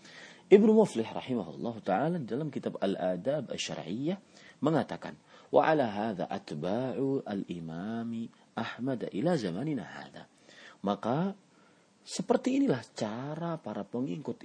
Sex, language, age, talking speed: male, English, 40-59, 100 wpm